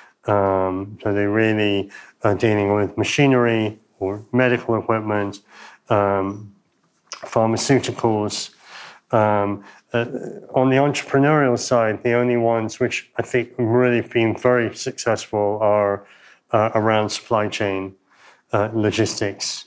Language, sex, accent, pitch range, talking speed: Czech, male, British, 105-120 Hz, 110 wpm